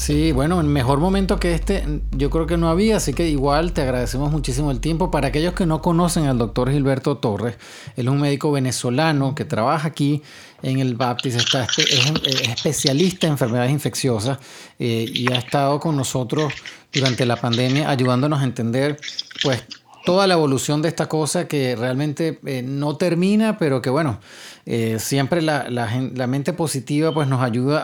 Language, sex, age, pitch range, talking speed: English, male, 30-49, 130-160 Hz, 180 wpm